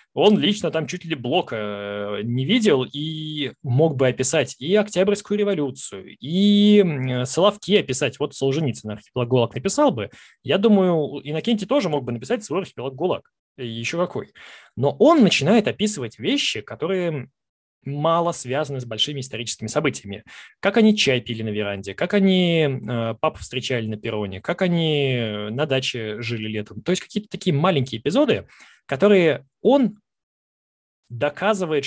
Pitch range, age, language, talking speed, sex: 125-180 Hz, 20-39, Russian, 140 wpm, male